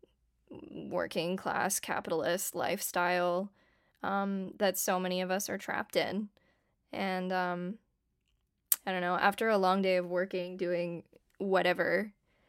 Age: 10-29